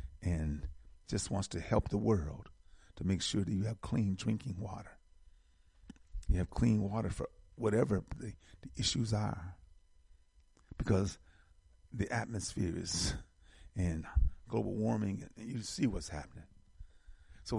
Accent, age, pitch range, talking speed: American, 50-69, 80-110 Hz, 135 wpm